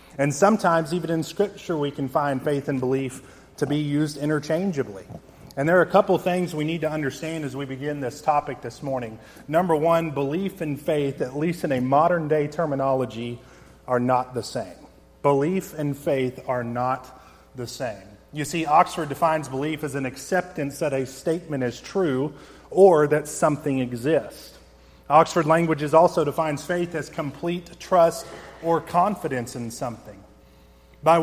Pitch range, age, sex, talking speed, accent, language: 130-165 Hz, 30-49, male, 165 wpm, American, English